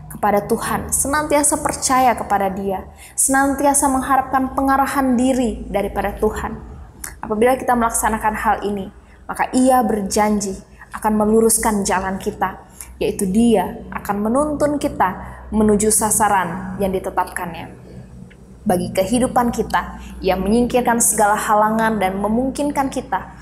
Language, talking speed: Indonesian, 110 wpm